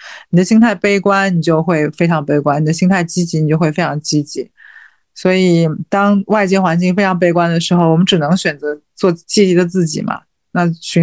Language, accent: Chinese, native